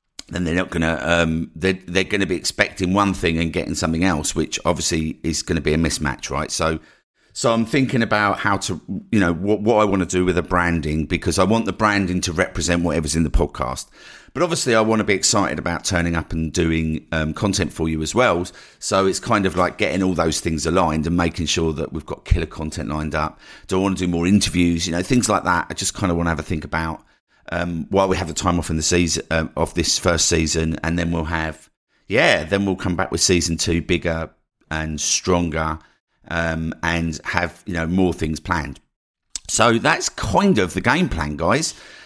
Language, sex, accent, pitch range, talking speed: English, male, British, 80-95 Hz, 225 wpm